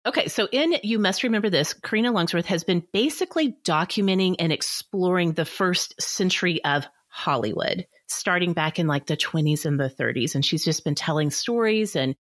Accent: American